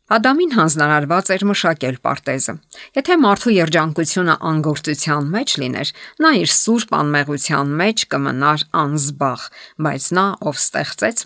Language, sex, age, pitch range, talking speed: English, female, 50-69, 140-180 Hz, 115 wpm